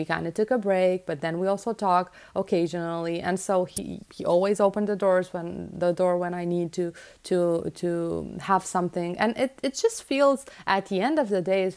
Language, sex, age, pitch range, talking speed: English, female, 30-49, 170-210 Hz, 215 wpm